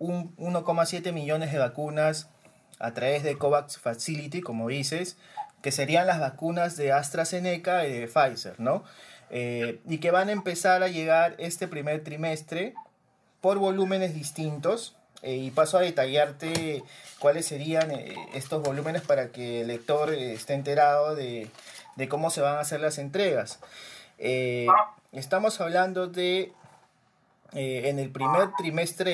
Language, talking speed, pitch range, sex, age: Spanish, 145 wpm, 140-180 Hz, male, 30-49